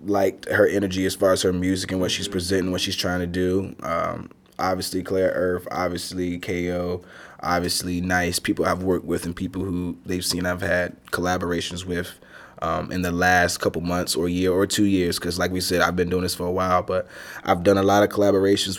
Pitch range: 90-100 Hz